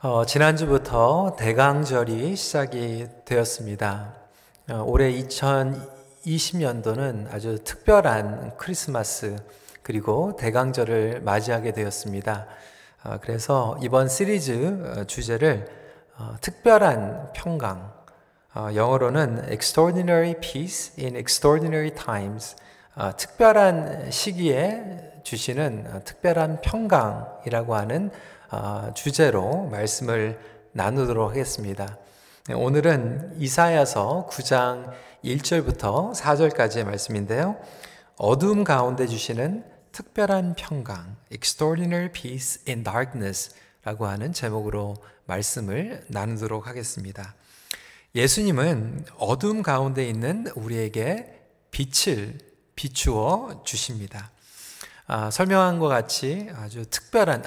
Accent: native